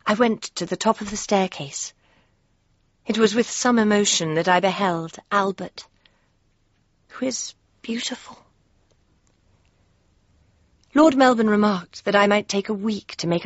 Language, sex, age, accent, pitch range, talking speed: English, female, 40-59, British, 150-210 Hz, 140 wpm